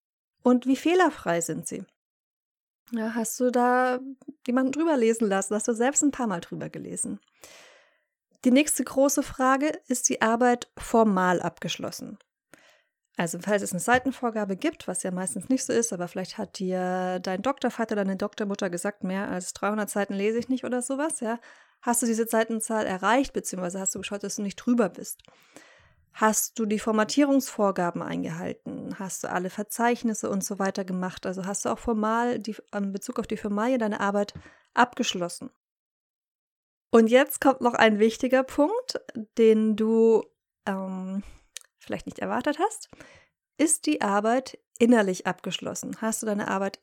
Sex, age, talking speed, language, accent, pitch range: female, 20-39, 160 wpm, German, German, 200-255 Hz